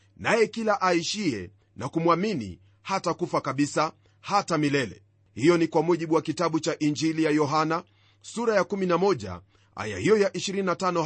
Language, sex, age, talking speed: Swahili, male, 40-59, 140 wpm